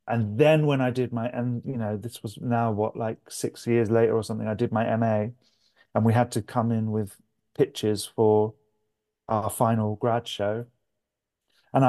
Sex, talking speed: male, 190 wpm